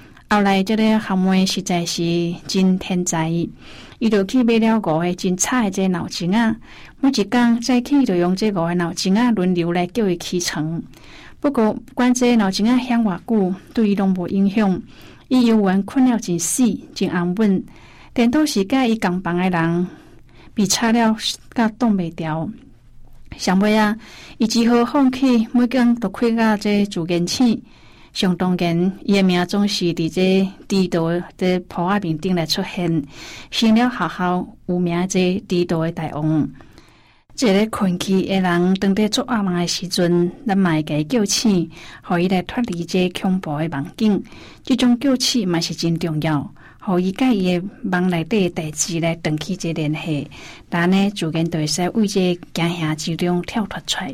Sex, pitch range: female, 175-220 Hz